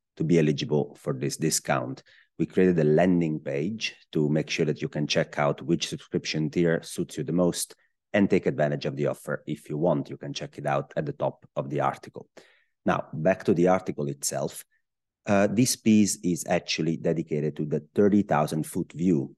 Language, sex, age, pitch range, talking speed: English, male, 30-49, 75-90 Hz, 195 wpm